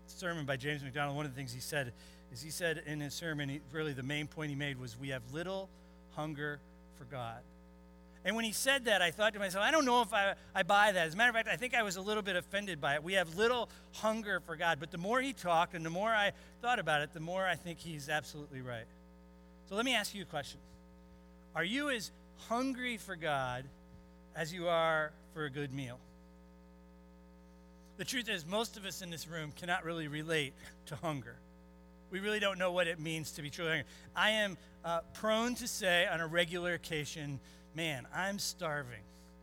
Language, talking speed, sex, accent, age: English, 220 wpm, male, American, 40-59